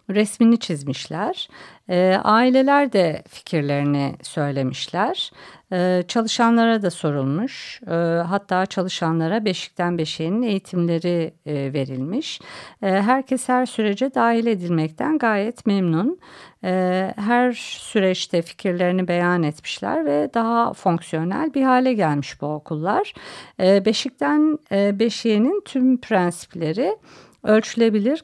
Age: 50-69